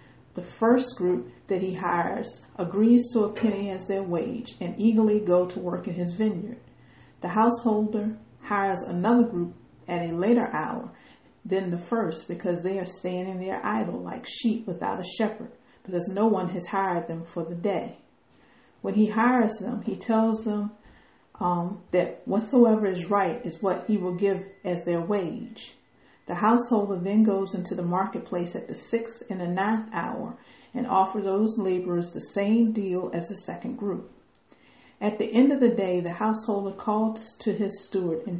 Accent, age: American, 50-69